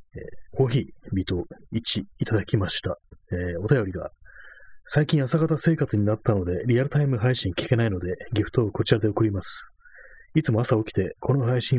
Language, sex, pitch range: Japanese, male, 95-125 Hz